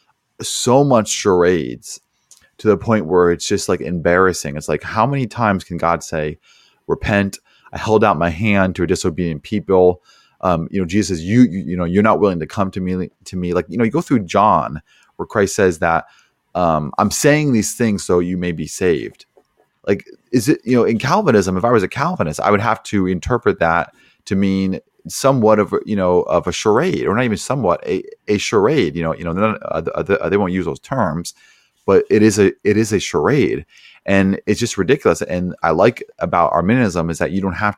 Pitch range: 85-105 Hz